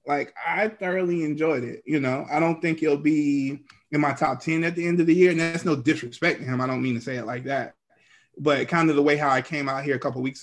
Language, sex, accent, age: English, male, American, 20-39